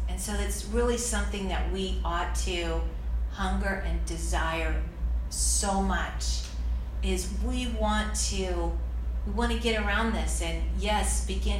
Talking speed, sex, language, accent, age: 130 wpm, female, English, American, 40-59